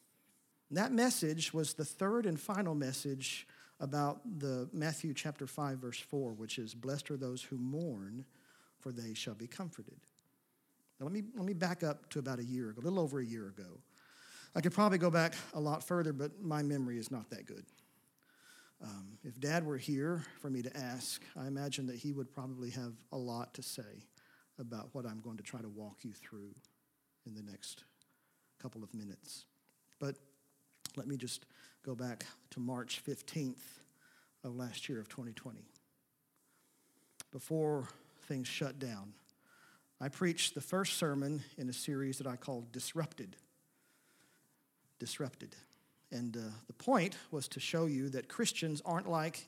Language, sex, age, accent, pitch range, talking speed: English, male, 50-69, American, 125-155 Hz, 170 wpm